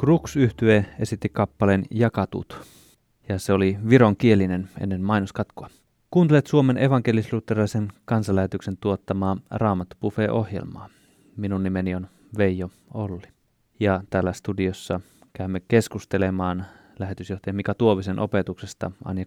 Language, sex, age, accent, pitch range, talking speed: Finnish, male, 20-39, native, 95-110 Hz, 100 wpm